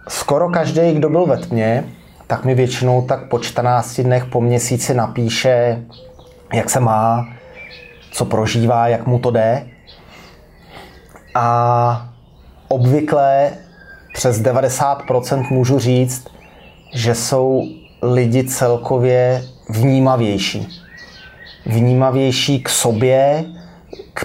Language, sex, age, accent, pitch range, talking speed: Czech, male, 30-49, native, 120-145 Hz, 100 wpm